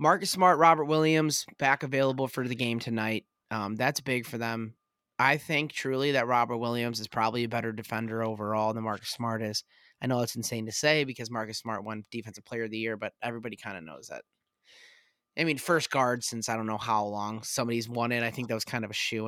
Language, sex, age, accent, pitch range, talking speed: English, male, 20-39, American, 115-140 Hz, 225 wpm